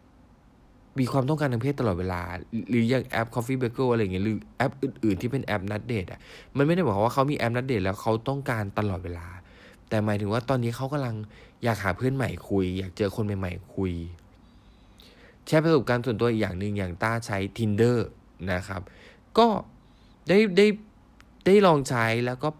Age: 20-39